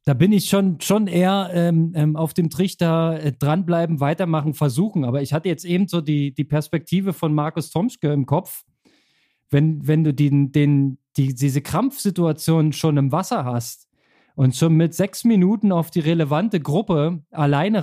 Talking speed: 170 wpm